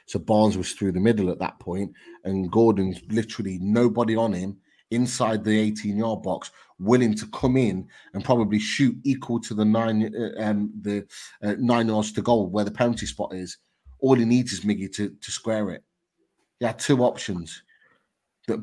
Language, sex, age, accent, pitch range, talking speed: English, male, 30-49, British, 95-115 Hz, 185 wpm